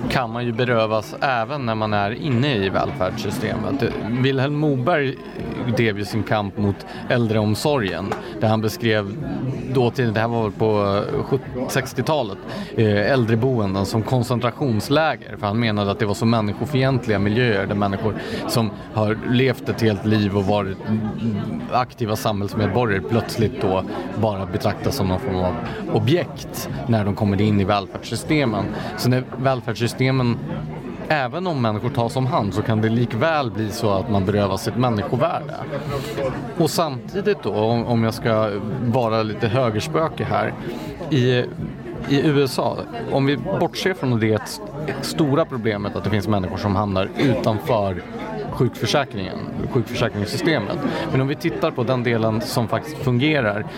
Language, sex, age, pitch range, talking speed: English, male, 30-49, 105-130 Hz, 140 wpm